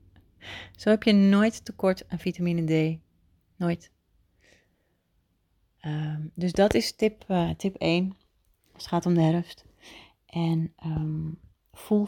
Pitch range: 150-175 Hz